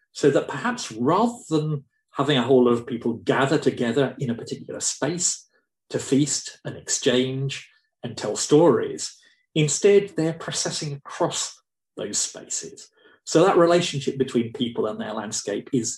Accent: British